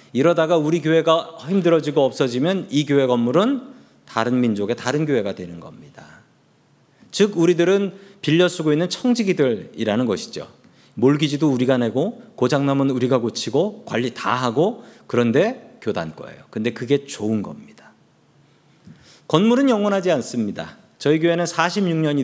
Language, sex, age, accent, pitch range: Korean, male, 40-59, native, 135-190 Hz